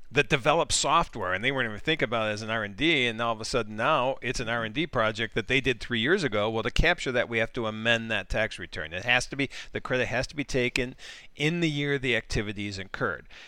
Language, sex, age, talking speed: English, male, 50-69, 270 wpm